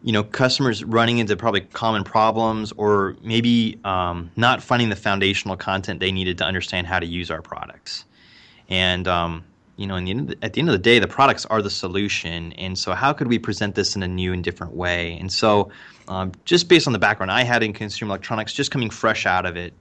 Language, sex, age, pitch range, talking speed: English, male, 20-39, 95-120 Hz, 235 wpm